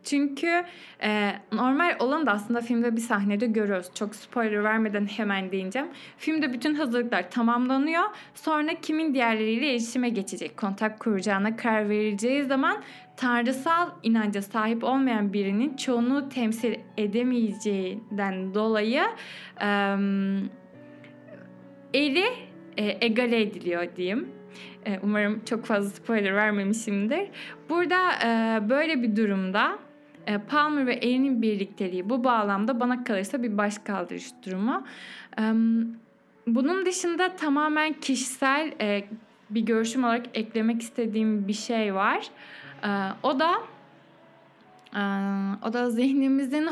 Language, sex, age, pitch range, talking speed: Turkish, female, 10-29, 205-260 Hz, 110 wpm